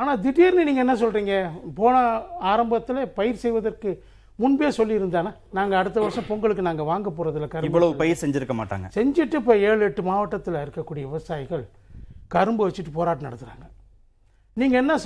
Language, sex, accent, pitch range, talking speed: Tamil, male, native, 135-225 Hz, 145 wpm